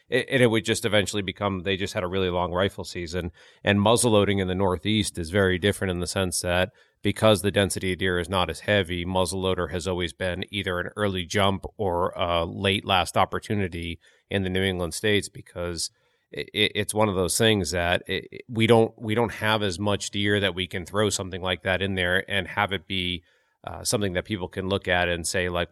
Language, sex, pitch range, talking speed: English, male, 90-105 Hz, 210 wpm